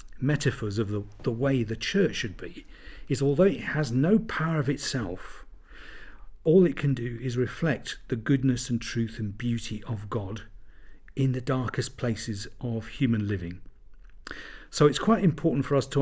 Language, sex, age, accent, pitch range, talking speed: English, male, 50-69, British, 115-145 Hz, 170 wpm